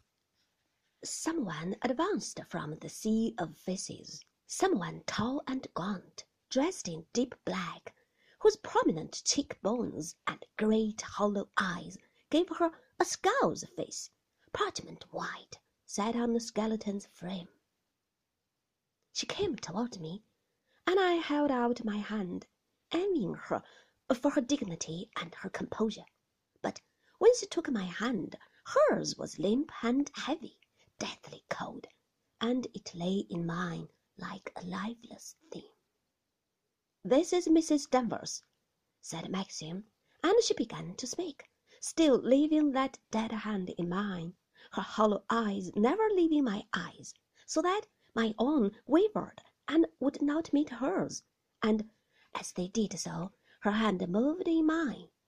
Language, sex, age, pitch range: Chinese, female, 30-49, 200-305 Hz